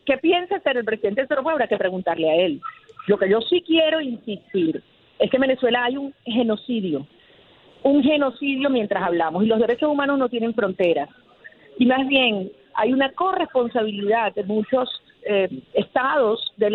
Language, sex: Spanish, female